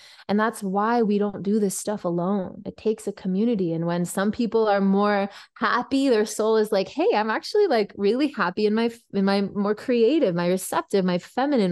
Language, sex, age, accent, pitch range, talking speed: English, female, 20-39, American, 190-255 Hz, 205 wpm